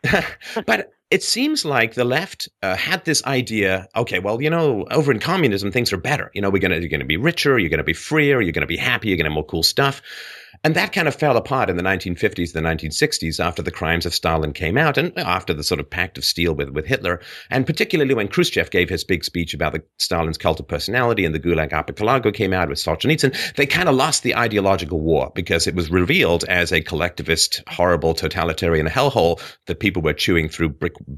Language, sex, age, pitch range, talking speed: English, male, 40-59, 85-125 Hz, 230 wpm